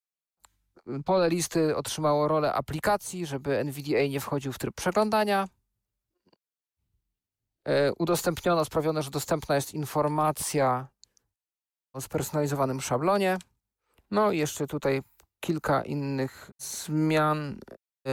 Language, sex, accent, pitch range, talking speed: Polish, male, native, 135-155 Hz, 95 wpm